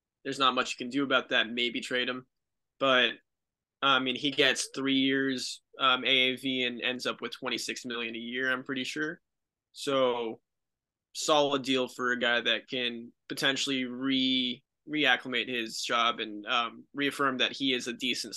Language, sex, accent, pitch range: English, male, American, 120-140 Hz